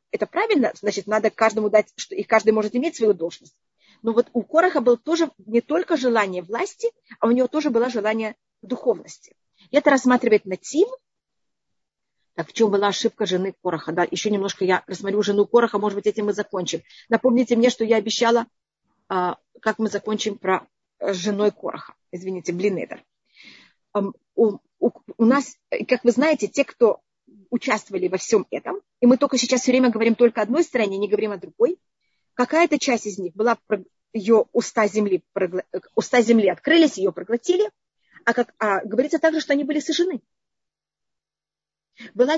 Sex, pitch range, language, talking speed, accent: female, 210-270 Hz, Russian, 165 wpm, native